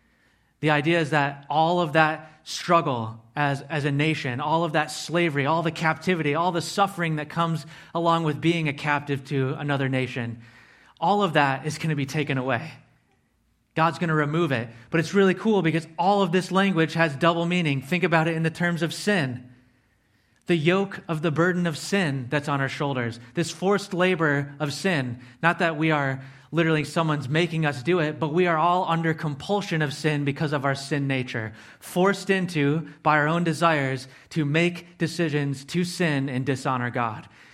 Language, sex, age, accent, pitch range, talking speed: English, male, 30-49, American, 140-175 Hz, 190 wpm